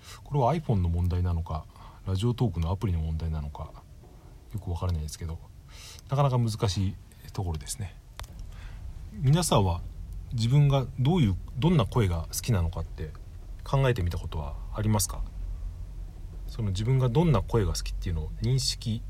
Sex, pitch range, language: male, 85-115 Hz, Japanese